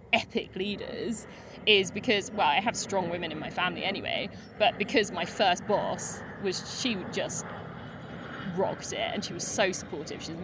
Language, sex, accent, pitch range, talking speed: English, female, British, 170-260 Hz, 170 wpm